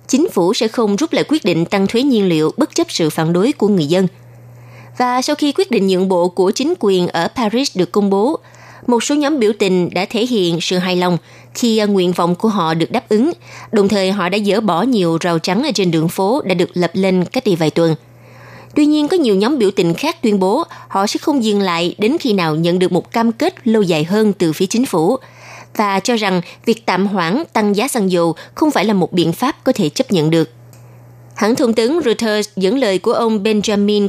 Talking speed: 240 wpm